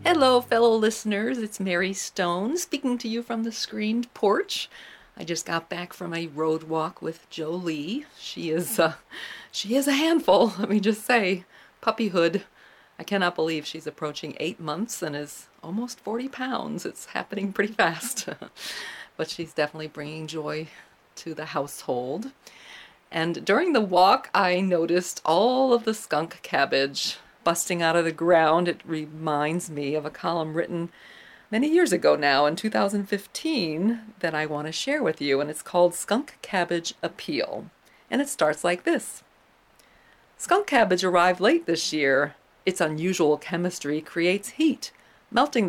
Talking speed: 155 wpm